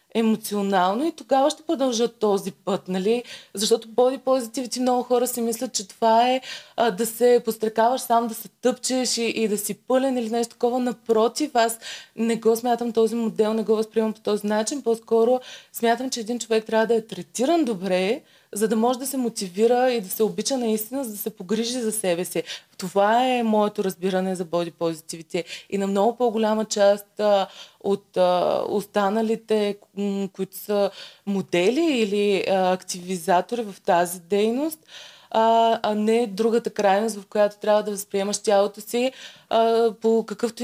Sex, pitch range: female, 205-240 Hz